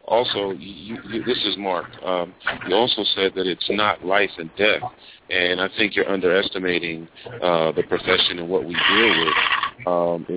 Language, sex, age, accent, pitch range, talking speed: English, male, 40-59, American, 90-105 Hz, 175 wpm